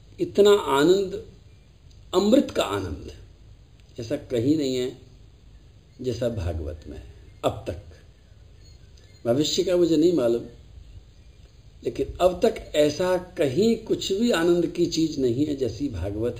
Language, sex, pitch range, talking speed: Hindi, male, 105-150 Hz, 130 wpm